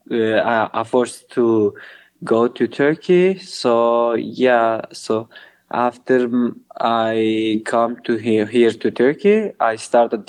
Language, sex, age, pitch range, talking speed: English, male, 20-39, 115-130 Hz, 115 wpm